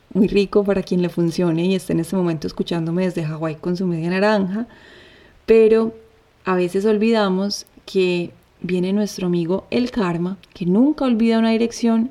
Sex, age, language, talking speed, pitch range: female, 30-49, Spanish, 165 wpm, 175-210 Hz